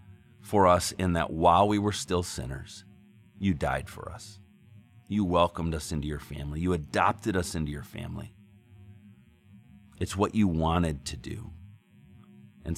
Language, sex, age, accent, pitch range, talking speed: English, male, 40-59, American, 85-105 Hz, 150 wpm